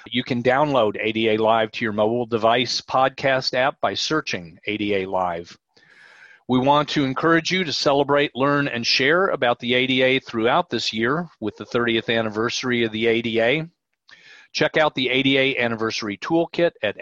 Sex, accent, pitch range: male, American, 105-135 Hz